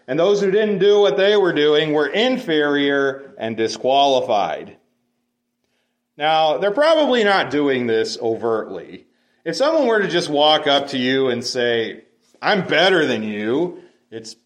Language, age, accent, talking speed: English, 40-59, American, 150 wpm